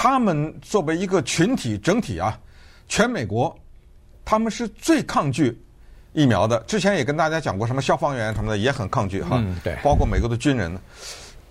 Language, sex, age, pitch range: Chinese, male, 50-69, 110-185 Hz